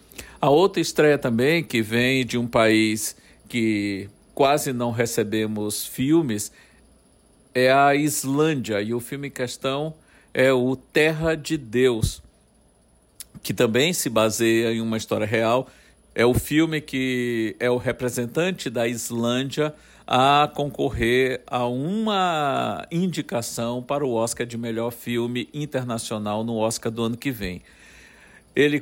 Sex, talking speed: male, 130 wpm